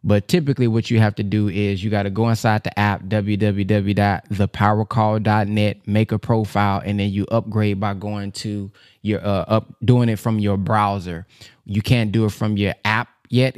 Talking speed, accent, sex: 185 wpm, American, male